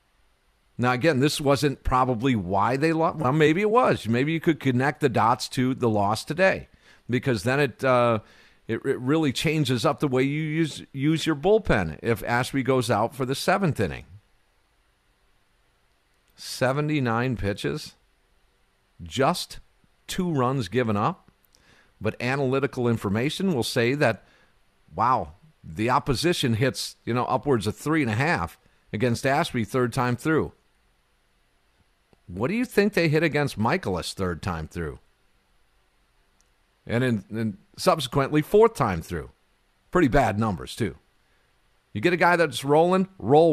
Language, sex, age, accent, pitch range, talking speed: English, male, 50-69, American, 105-155 Hz, 140 wpm